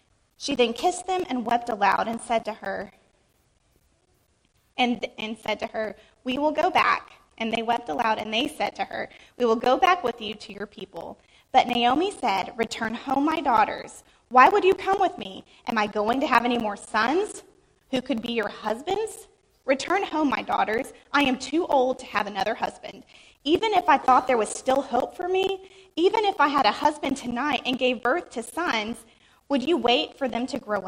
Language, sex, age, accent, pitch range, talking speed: English, female, 20-39, American, 225-300 Hz, 205 wpm